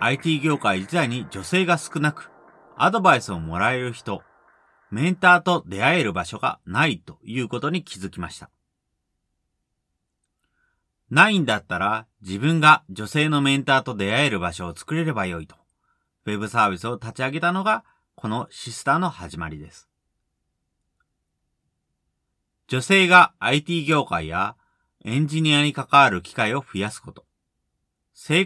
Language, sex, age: Japanese, male, 40-59